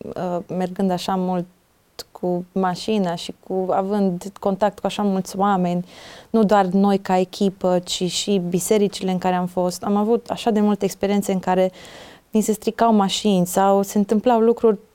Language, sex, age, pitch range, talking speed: Romanian, female, 20-39, 180-215 Hz, 165 wpm